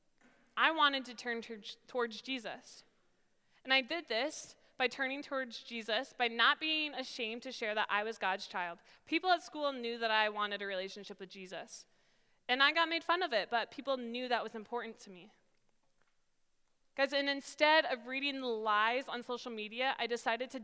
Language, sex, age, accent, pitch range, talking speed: English, female, 20-39, American, 220-275 Hz, 180 wpm